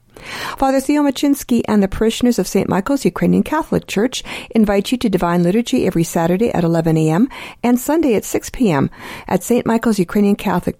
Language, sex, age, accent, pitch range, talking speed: English, female, 50-69, American, 185-245 Hz, 180 wpm